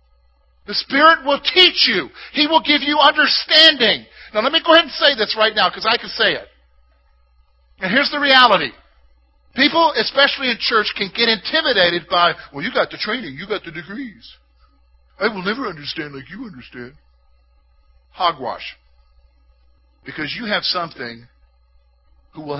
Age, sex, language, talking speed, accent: 50-69, male, English, 160 wpm, American